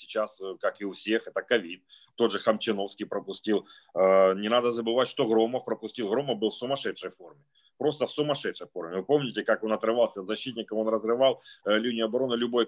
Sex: male